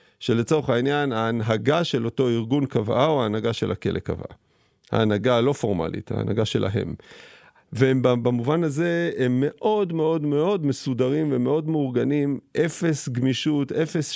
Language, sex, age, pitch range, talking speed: Hebrew, male, 40-59, 110-140 Hz, 125 wpm